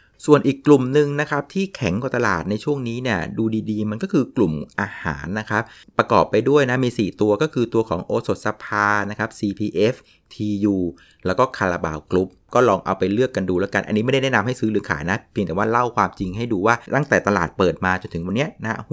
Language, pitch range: Thai, 95-130 Hz